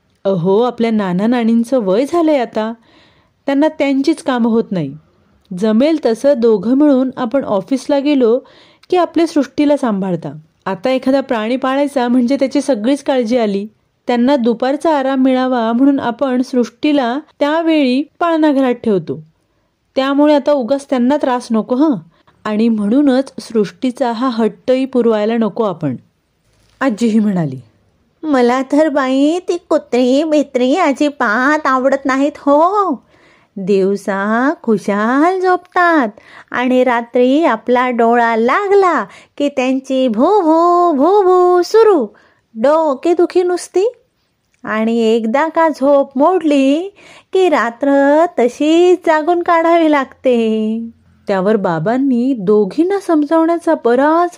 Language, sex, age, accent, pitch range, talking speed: Marathi, female, 30-49, native, 230-300 Hz, 115 wpm